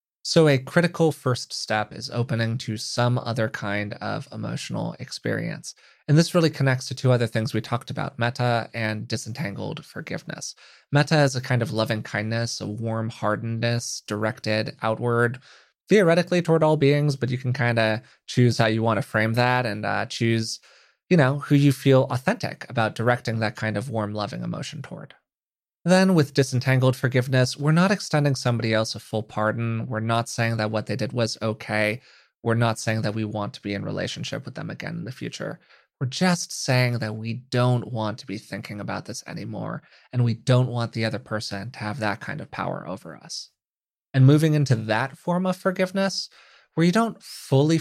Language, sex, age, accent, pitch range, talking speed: English, male, 20-39, American, 110-145 Hz, 190 wpm